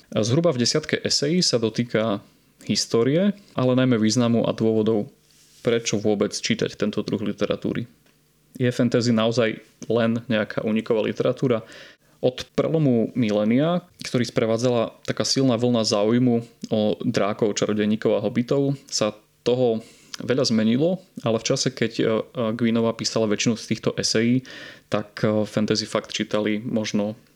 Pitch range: 110-120 Hz